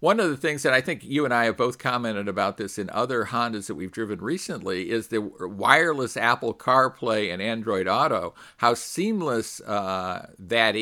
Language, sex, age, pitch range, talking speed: English, male, 50-69, 105-135 Hz, 190 wpm